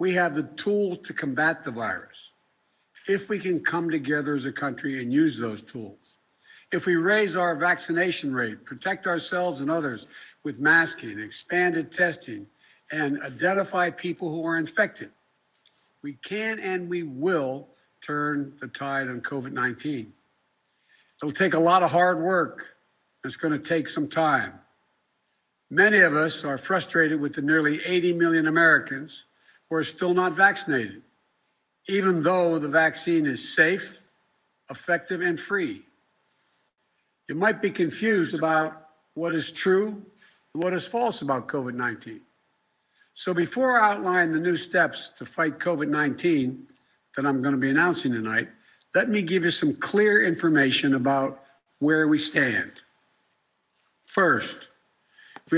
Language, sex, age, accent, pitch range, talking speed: English, male, 60-79, American, 145-185 Hz, 145 wpm